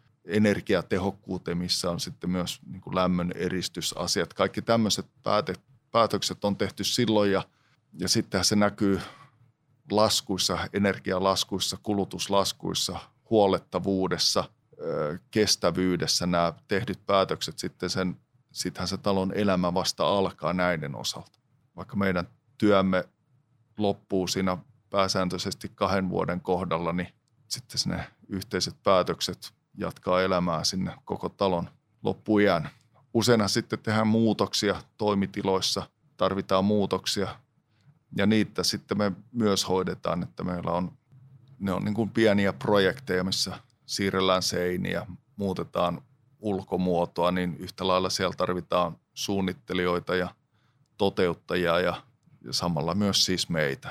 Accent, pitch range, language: native, 90-110 Hz, Finnish